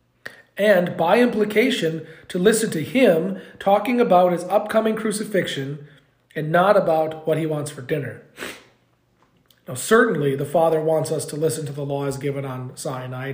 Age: 40-59